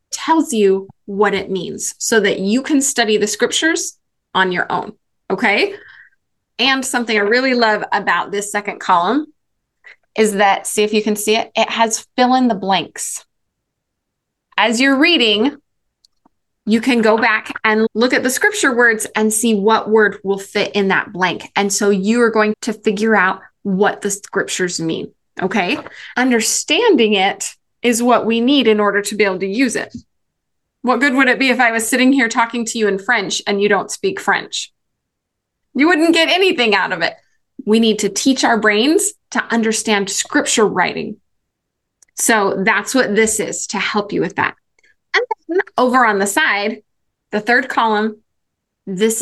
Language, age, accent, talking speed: English, 20-39, American, 175 wpm